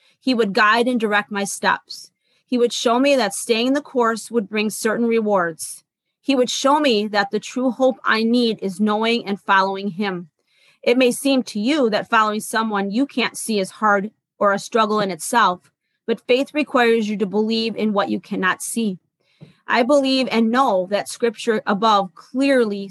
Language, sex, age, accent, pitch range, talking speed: English, female, 30-49, American, 205-245 Hz, 185 wpm